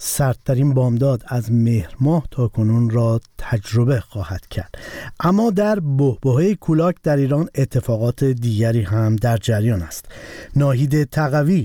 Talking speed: 130 wpm